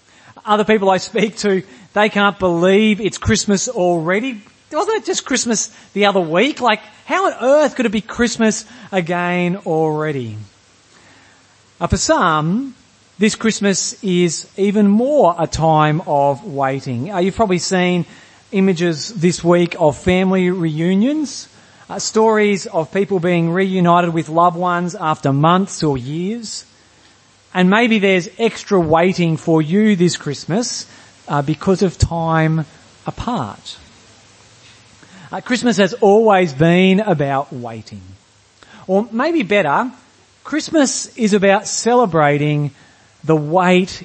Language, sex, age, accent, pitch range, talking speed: English, male, 30-49, Australian, 145-205 Hz, 125 wpm